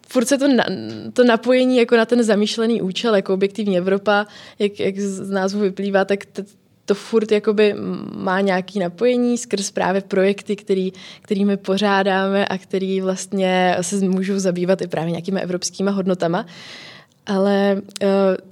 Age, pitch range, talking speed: 20-39, 190-210 Hz, 130 wpm